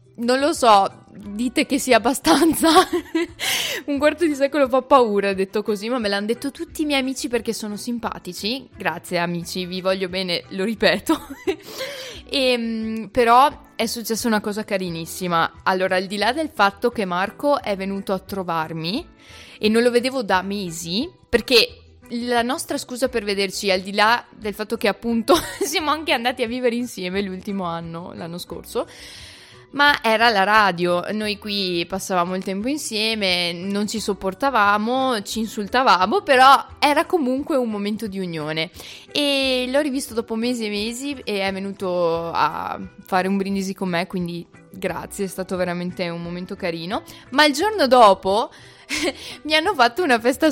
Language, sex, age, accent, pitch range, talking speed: Italian, female, 20-39, native, 190-265 Hz, 160 wpm